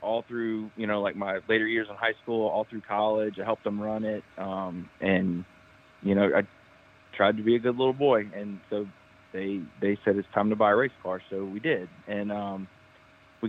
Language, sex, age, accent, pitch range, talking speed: English, male, 20-39, American, 95-115 Hz, 220 wpm